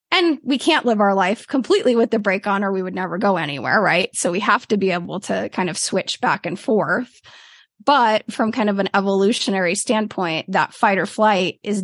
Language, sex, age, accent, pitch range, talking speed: English, female, 20-39, American, 185-230 Hz, 220 wpm